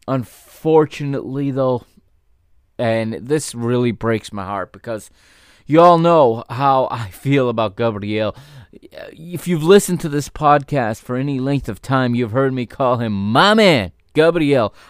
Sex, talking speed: male, 145 wpm